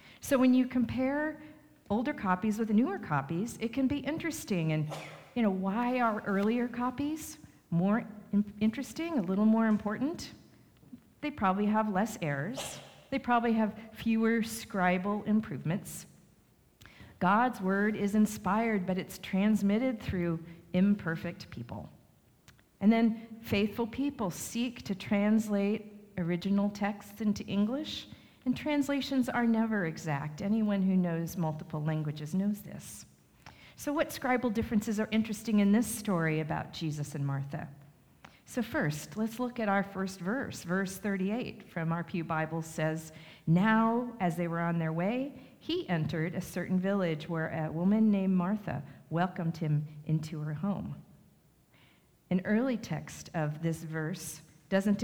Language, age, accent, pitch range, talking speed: English, 40-59, American, 170-225 Hz, 140 wpm